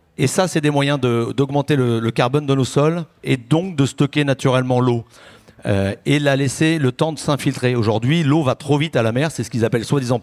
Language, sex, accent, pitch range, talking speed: French, male, French, 120-140 Hz, 235 wpm